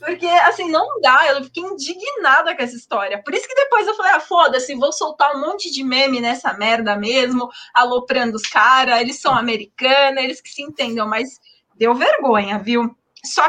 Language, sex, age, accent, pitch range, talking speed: Portuguese, female, 20-39, Brazilian, 230-290 Hz, 185 wpm